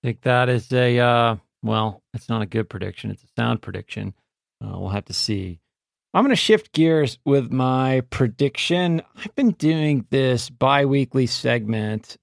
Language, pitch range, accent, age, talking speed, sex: English, 110-135 Hz, American, 40-59, 175 wpm, male